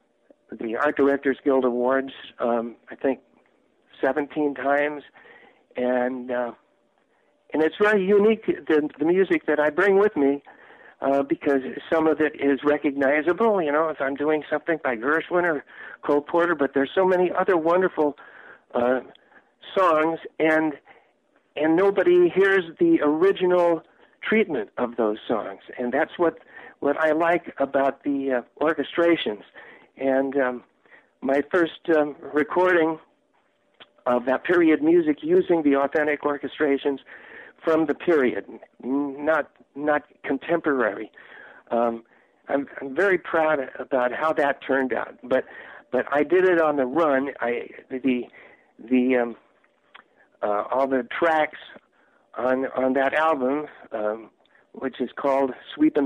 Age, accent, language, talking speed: 60-79, American, English, 135 wpm